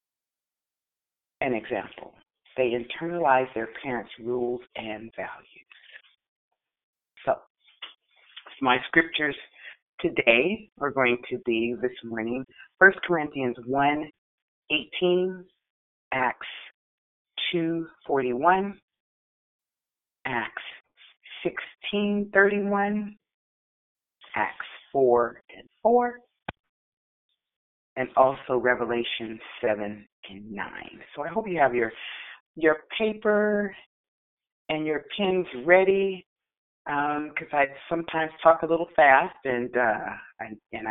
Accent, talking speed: American, 90 wpm